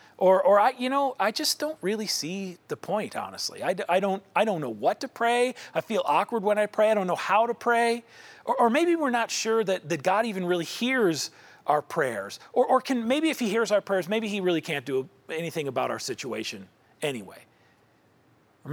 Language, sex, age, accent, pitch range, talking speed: English, male, 40-59, American, 170-225 Hz, 220 wpm